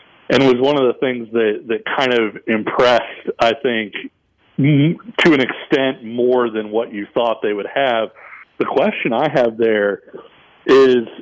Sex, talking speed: male, 165 wpm